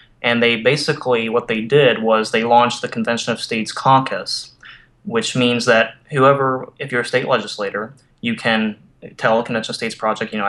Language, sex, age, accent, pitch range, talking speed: English, male, 20-39, American, 115-130 Hz, 190 wpm